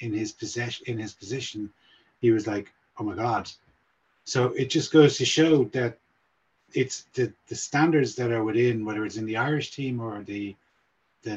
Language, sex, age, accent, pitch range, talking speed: English, male, 30-49, Irish, 105-125 Hz, 185 wpm